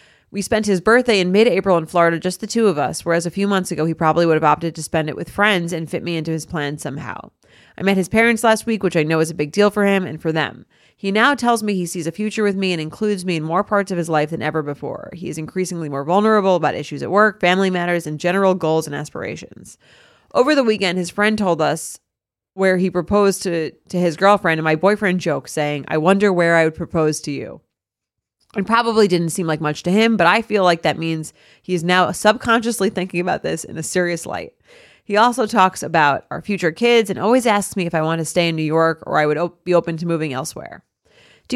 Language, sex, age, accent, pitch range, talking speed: English, female, 30-49, American, 160-205 Hz, 250 wpm